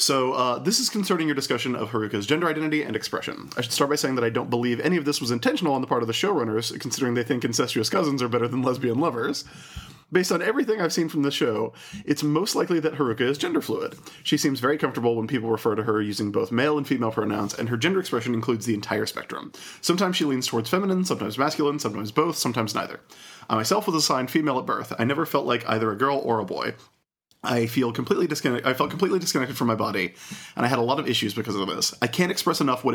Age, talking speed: 30-49, 245 wpm